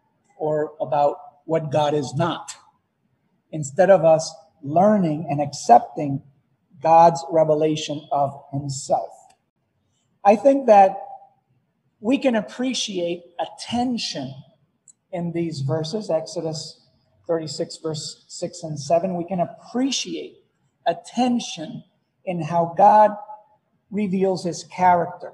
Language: English